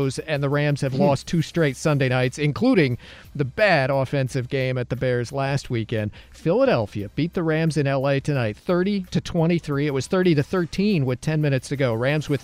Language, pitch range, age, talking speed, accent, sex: English, 135-165 Hz, 40-59, 180 wpm, American, male